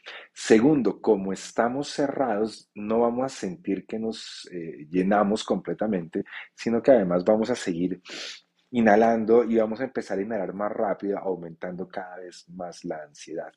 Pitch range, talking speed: 90-110 Hz, 150 wpm